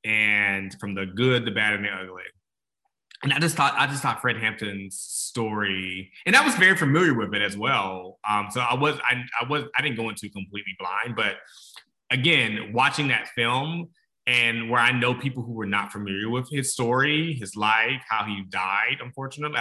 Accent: American